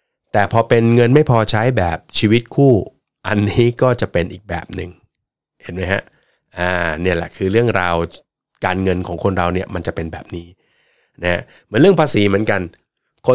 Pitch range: 90-115 Hz